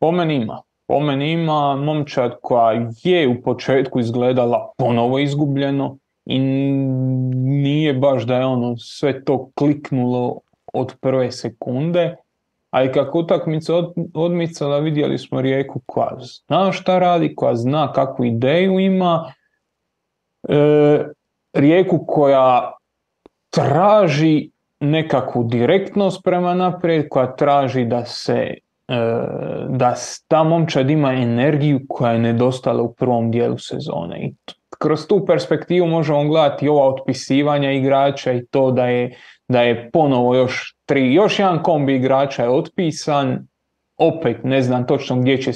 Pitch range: 130-160 Hz